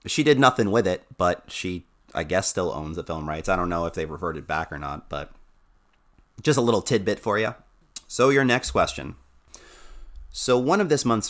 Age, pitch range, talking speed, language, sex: 30-49, 80-115 Hz, 205 wpm, English, male